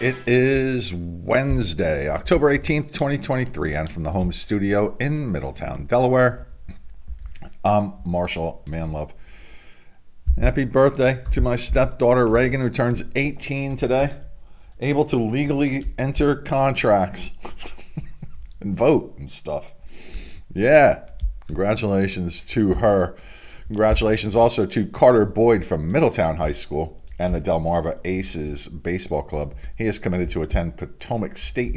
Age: 40-59